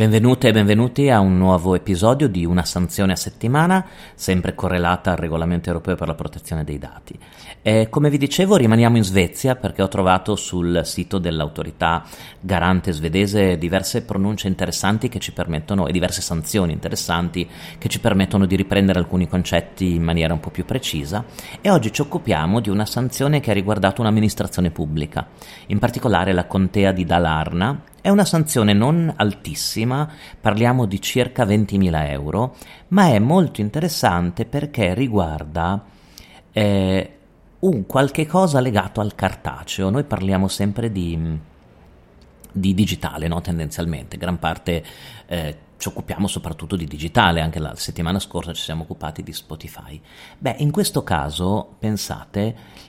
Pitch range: 85-115 Hz